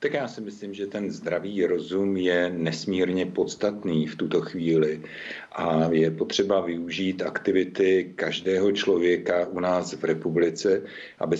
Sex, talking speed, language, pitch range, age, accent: male, 135 wpm, Czech, 80-90 Hz, 50-69, native